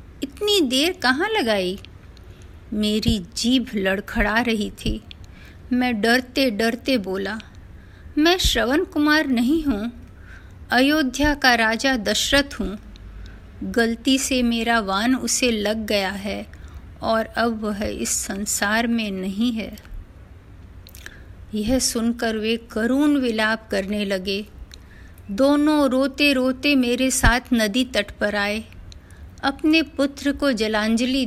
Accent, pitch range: native, 200-265 Hz